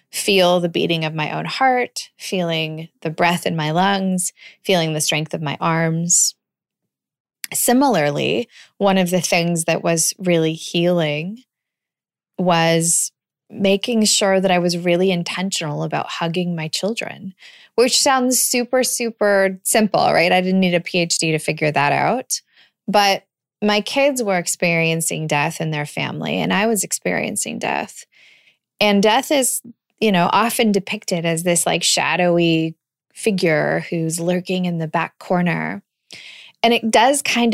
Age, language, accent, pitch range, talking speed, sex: 20-39, English, American, 165-205 Hz, 145 wpm, female